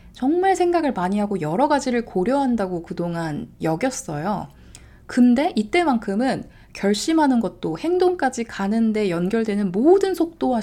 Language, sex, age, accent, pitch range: Korean, female, 20-39, native, 190-280 Hz